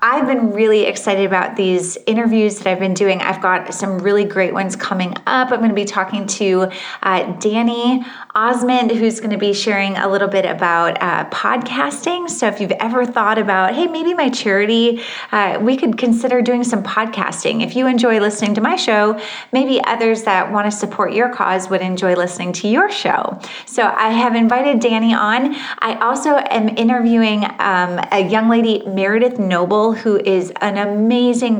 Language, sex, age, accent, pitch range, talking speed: English, female, 30-49, American, 195-240 Hz, 180 wpm